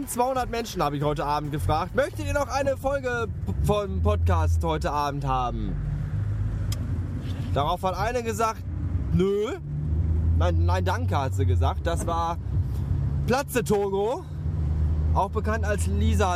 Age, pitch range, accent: 20-39, 85-135 Hz, German